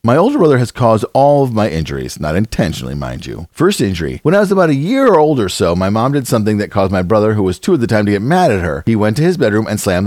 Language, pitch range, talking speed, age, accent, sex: English, 95-135 Hz, 300 wpm, 40-59, American, male